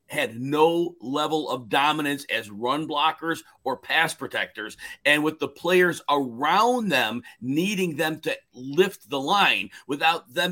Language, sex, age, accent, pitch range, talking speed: English, male, 50-69, American, 140-180 Hz, 145 wpm